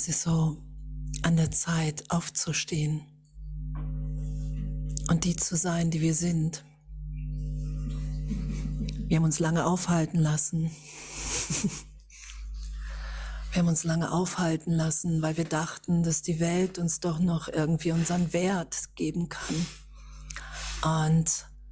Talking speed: 115 wpm